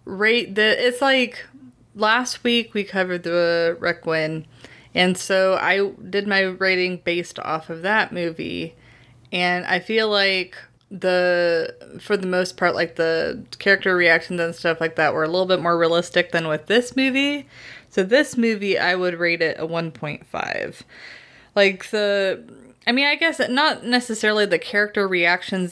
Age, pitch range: 20-39, 170-215 Hz